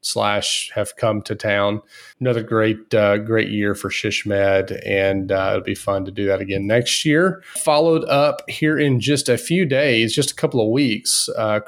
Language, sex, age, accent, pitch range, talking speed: English, male, 30-49, American, 100-125 Hz, 195 wpm